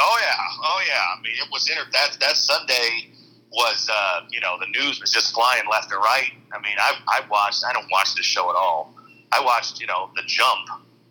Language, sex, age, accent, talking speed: English, male, 40-59, American, 225 wpm